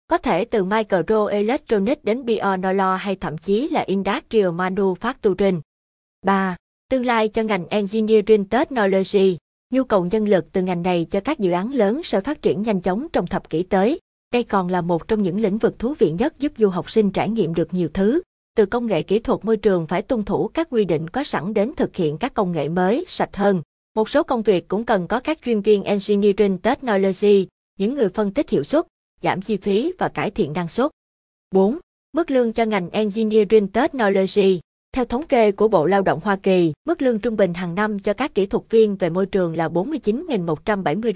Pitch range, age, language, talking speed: 185-225 Hz, 20-39, Vietnamese, 205 wpm